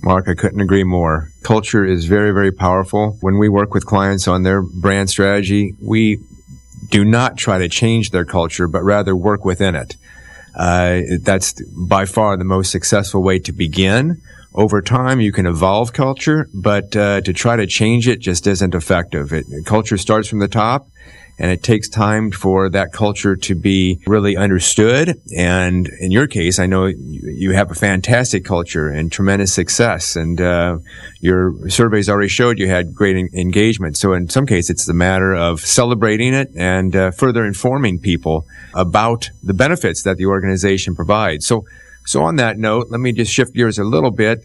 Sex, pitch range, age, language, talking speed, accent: male, 90-110 Hz, 30-49, English, 180 wpm, American